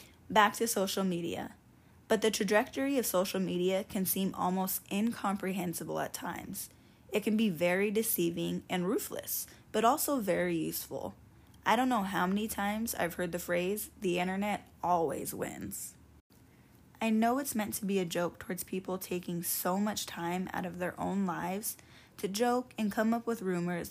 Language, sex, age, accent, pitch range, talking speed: English, female, 10-29, American, 180-220 Hz, 170 wpm